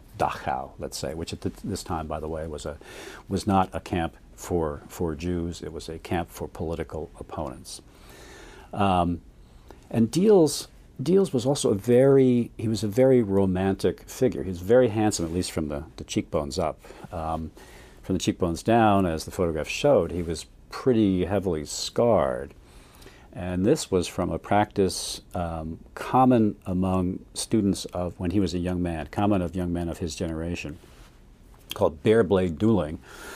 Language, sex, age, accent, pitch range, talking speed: English, male, 50-69, American, 80-105 Hz, 165 wpm